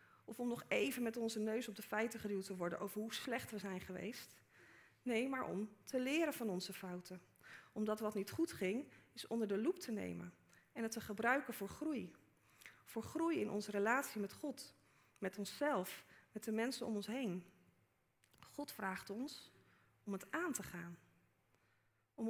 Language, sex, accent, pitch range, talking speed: Dutch, female, Dutch, 190-255 Hz, 185 wpm